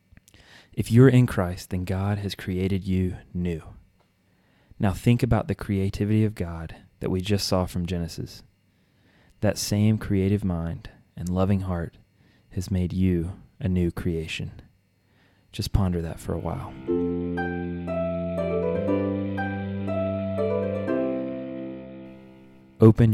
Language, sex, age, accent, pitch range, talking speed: English, male, 30-49, American, 90-105 Hz, 110 wpm